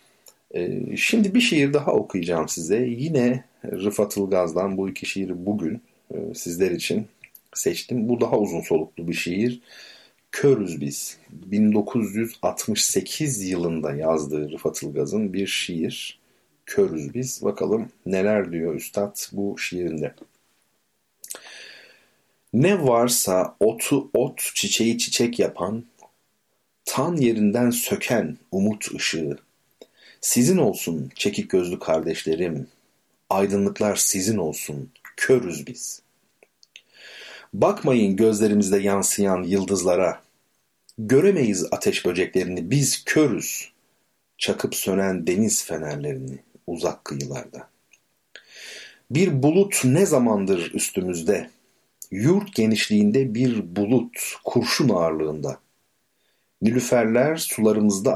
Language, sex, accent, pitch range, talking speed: Turkish, male, native, 95-125 Hz, 90 wpm